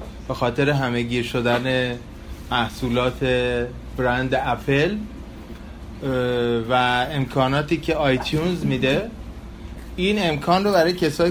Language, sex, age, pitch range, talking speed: Persian, male, 30-49, 125-160 Hz, 95 wpm